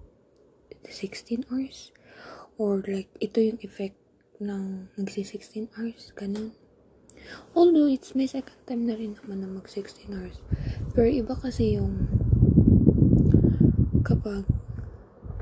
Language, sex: Filipino, female